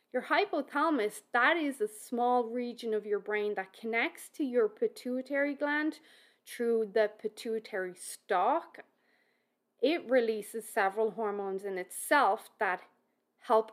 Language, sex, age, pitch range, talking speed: English, female, 20-39, 210-265 Hz, 120 wpm